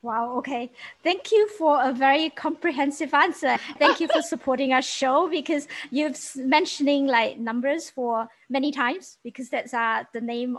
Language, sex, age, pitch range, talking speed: English, female, 20-39, 225-285 Hz, 160 wpm